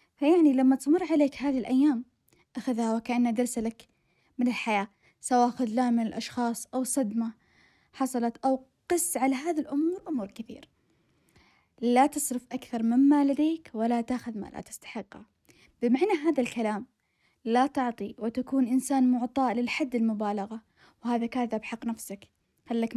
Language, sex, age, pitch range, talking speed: Arabic, female, 10-29, 235-275 Hz, 135 wpm